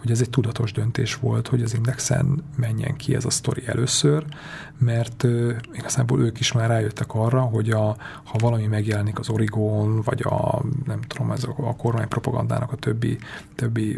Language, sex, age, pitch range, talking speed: Hungarian, male, 30-49, 110-135 Hz, 170 wpm